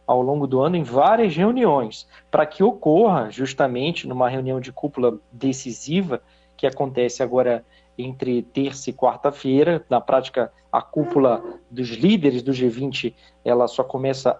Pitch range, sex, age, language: 125-155 Hz, male, 40-59, Portuguese